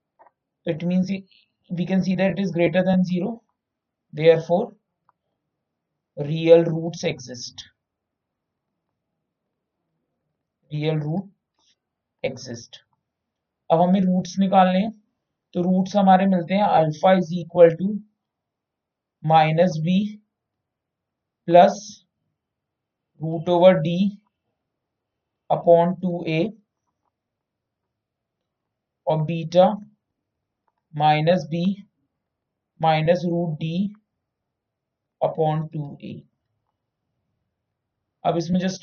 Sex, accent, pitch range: male, native, 155-185 Hz